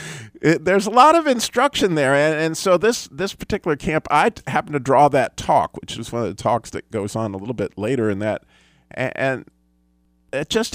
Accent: American